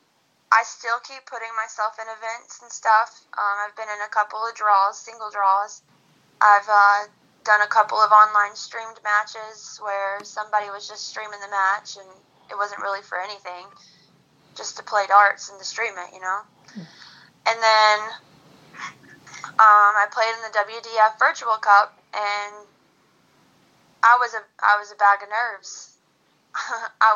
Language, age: English, 10-29